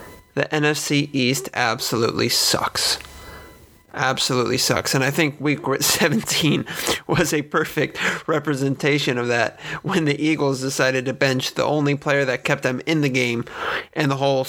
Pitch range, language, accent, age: 125-150 Hz, English, American, 30-49